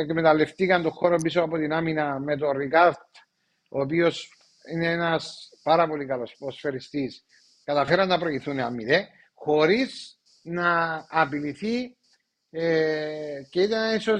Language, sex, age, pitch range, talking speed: Greek, male, 50-69, 145-185 Hz, 125 wpm